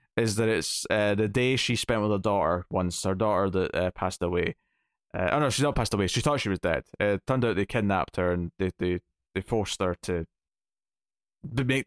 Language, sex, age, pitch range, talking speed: English, male, 20-39, 100-125 Hz, 230 wpm